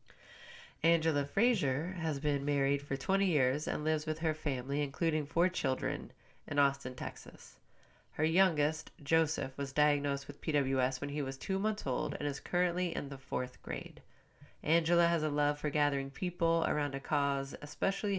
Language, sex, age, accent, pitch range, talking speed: English, female, 30-49, American, 135-165 Hz, 165 wpm